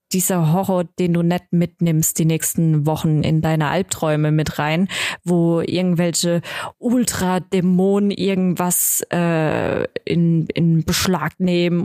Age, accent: 20-39, German